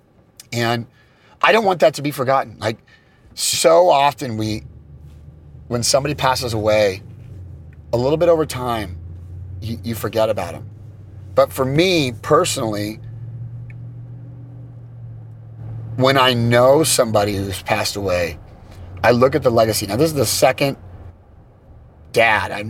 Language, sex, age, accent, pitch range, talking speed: English, male, 30-49, American, 100-130 Hz, 130 wpm